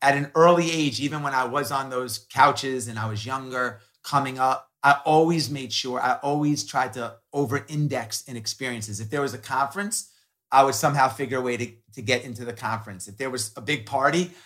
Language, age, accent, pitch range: English, 30-49, American, 115-145 Hz